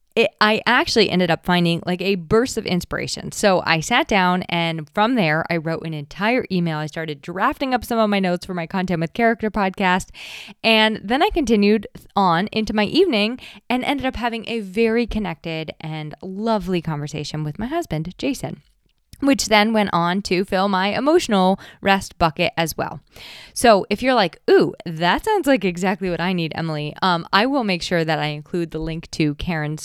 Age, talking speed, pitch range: 20-39, 190 wpm, 165-215 Hz